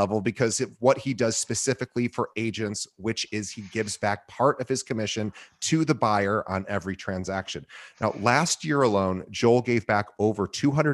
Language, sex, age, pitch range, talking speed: English, male, 30-49, 100-125 Hz, 175 wpm